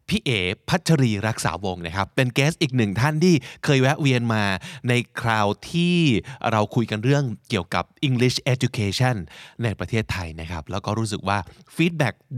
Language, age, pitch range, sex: Thai, 20-39, 105-140 Hz, male